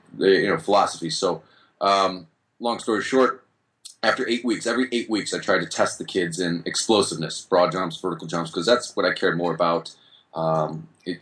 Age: 30-49